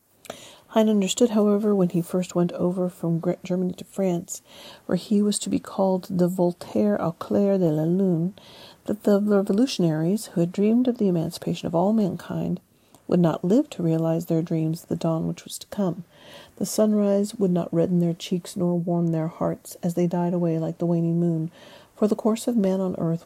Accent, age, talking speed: American, 40-59, 195 wpm